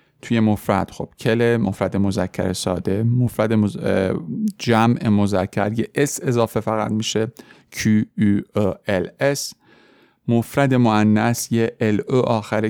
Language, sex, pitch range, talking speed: Persian, male, 100-120 Hz, 120 wpm